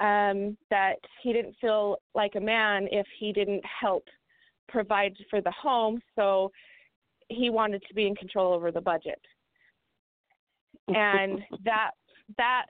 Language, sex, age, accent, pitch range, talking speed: English, female, 30-49, American, 195-225 Hz, 135 wpm